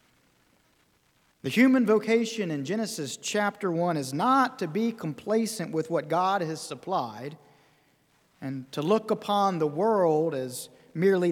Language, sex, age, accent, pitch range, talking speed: English, male, 40-59, American, 145-210 Hz, 135 wpm